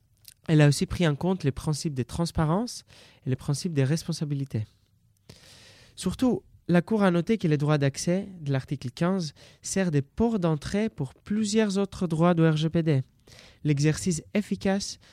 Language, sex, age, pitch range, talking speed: French, male, 20-39, 135-185 Hz, 155 wpm